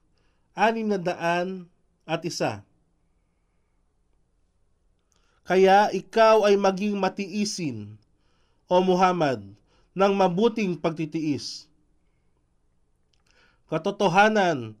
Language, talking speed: Filipino, 65 wpm